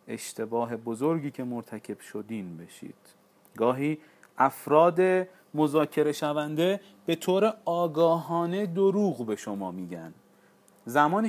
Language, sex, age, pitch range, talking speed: Persian, male, 40-59, 125-165 Hz, 95 wpm